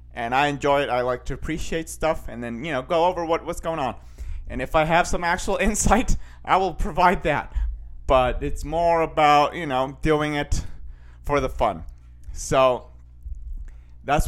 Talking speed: 180 wpm